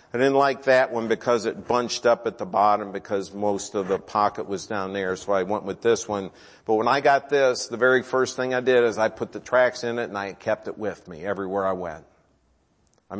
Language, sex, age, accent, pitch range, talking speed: English, male, 50-69, American, 110-130 Hz, 245 wpm